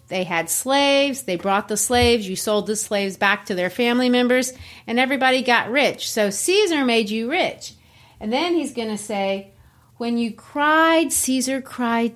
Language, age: English, 40-59